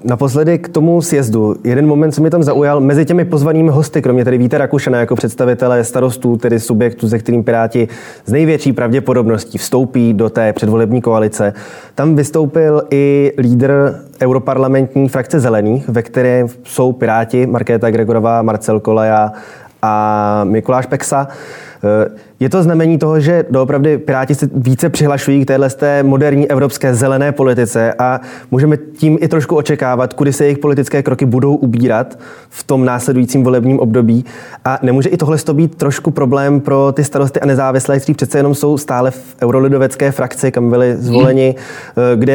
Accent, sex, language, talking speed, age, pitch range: native, male, Czech, 155 wpm, 20-39, 120-140 Hz